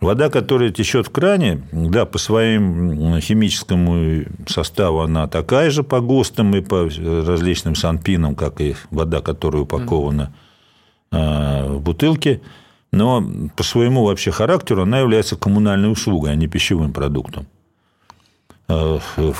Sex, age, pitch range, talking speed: male, 50-69, 80-105 Hz, 125 wpm